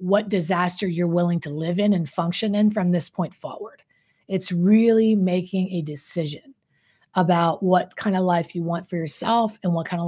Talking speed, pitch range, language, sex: 190 wpm, 175-215 Hz, English, female